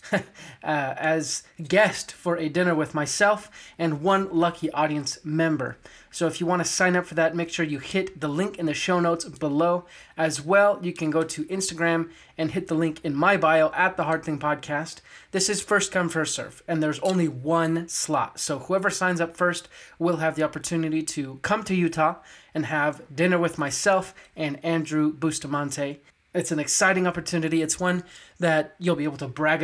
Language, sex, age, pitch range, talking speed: English, male, 20-39, 150-175 Hz, 195 wpm